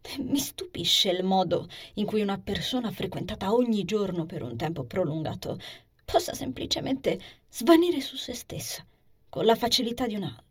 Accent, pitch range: native, 170-235 Hz